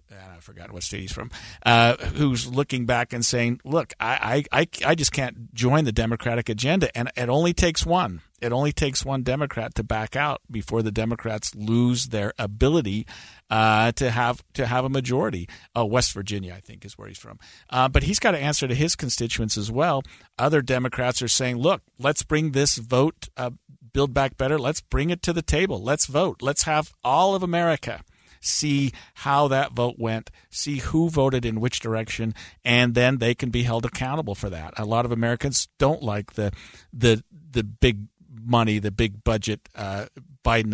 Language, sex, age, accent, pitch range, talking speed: English, male, 50-69, American, 105-135 Hz, 190 wpm